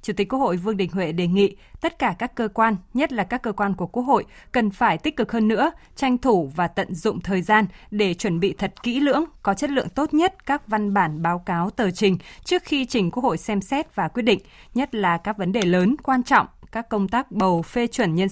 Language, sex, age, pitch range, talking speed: Vietnamese, female, 20-39, 185-240 Hz, 255 wpm